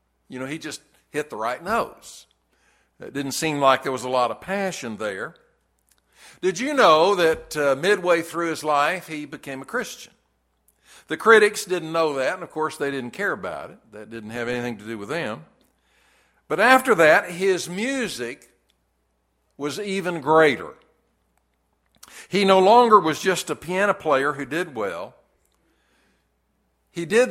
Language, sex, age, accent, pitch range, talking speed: English, male, 60-79, American, 125-185 Hz, 165 wpm